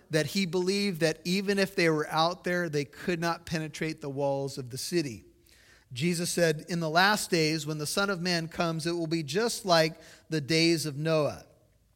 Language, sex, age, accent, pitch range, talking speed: English, male, 30-49, American, 145-180 Hz, 200 wpm